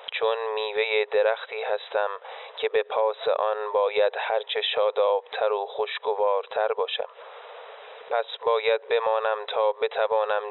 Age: 20-39